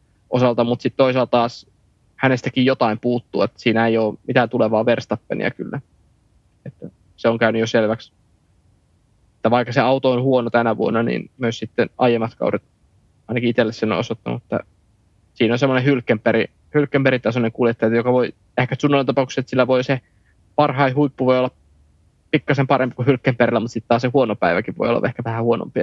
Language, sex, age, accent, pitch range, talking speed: Finnish, male, 20-39, native, 105-130 Hz, 170 wpm